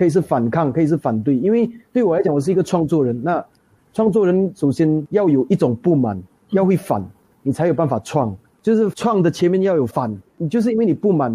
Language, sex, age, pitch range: Chinese, male, 30-49, 140-185 Hz